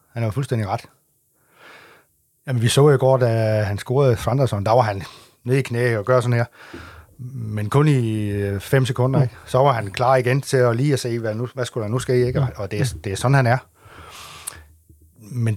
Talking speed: 220 wpm